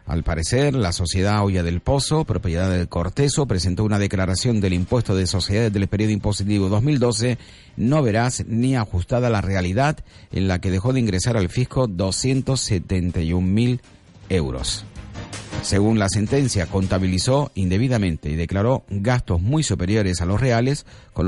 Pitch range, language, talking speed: 95-120 Hz, Spanish, 145 wpm